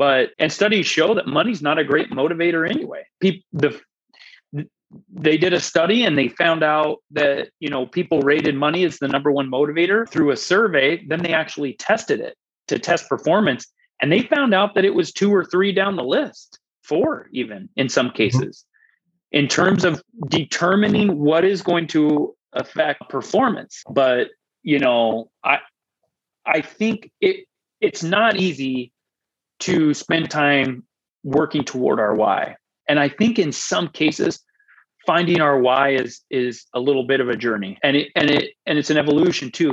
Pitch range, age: 140-185 Hz, 30-49